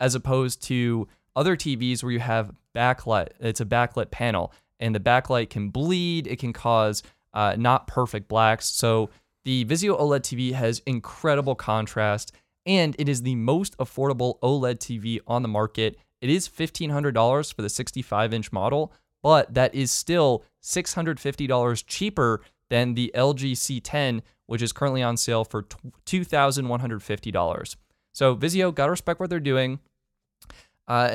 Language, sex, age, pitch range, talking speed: English, male, 20-39, 110-140 Hz, 150 wpm